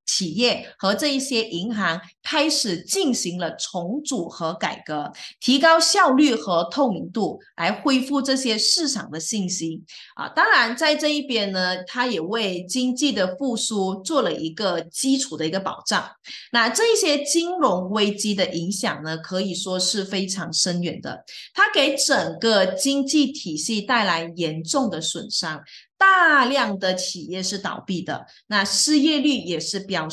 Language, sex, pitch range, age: Chinese, female, 180-270 Hz, 20-39